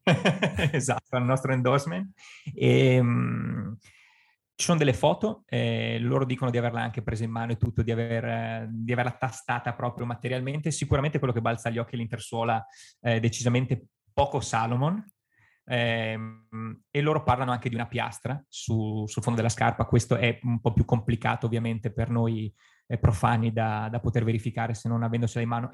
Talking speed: 170 wpm